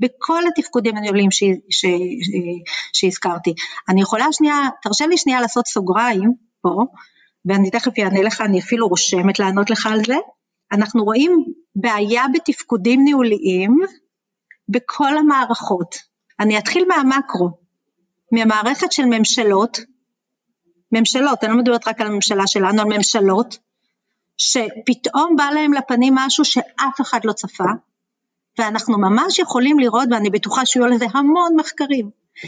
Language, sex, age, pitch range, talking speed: Hebrew, female, 40-59, 210-285 Hz, 125 wpm